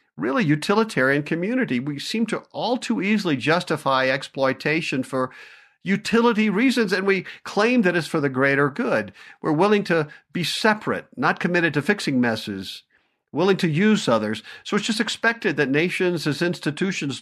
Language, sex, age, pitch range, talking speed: English, male, 50-69, 145-205 Hz, 155 wpm